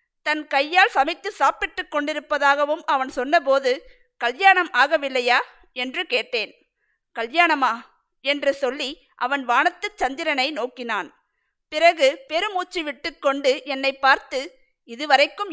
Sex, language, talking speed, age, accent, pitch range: female, Tamil, 95 wpm, 50-69, native, 270-340 Hz